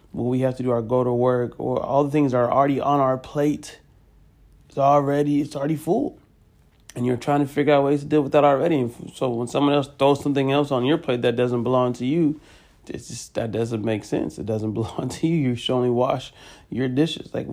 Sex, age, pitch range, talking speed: male, 30-49, 115-130 Hz, 230 wpm